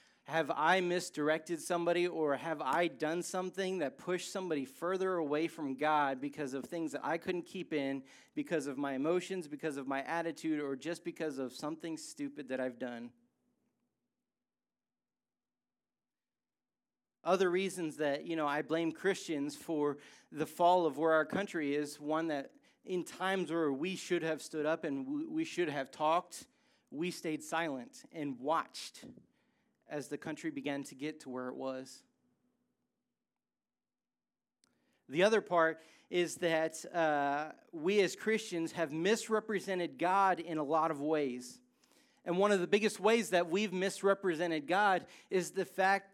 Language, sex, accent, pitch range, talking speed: English, male, American, 155-195 Hz, 150 wpm